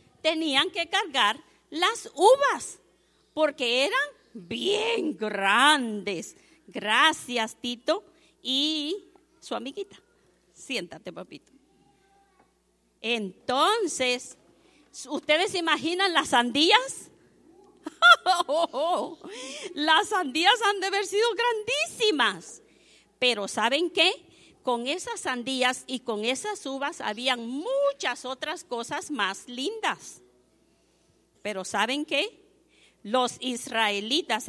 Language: Spanish